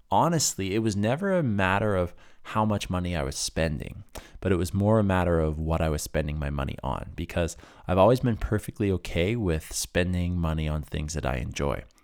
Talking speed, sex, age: 205 wpm, male, 20-39